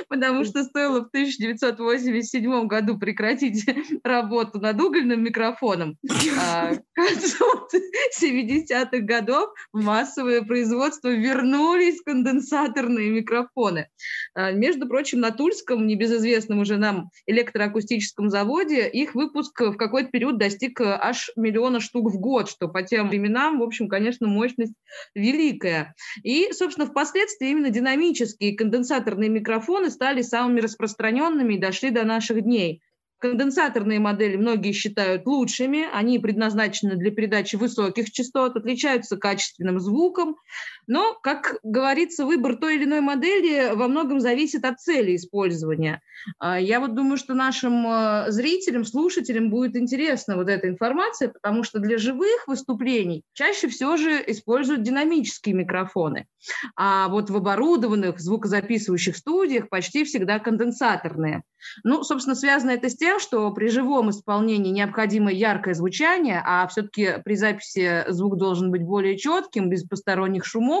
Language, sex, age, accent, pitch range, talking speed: Russian, female, 20-39, native, 210-275 Hz, 130 wpm